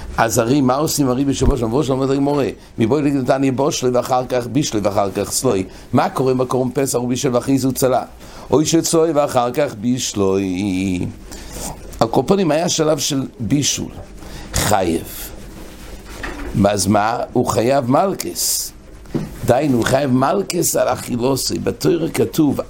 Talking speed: 145 wpm